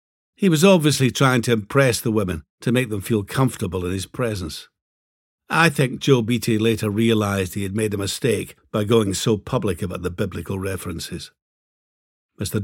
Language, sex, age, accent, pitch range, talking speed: English, male, 60-79, British, 95-125 Hz, 170 wpm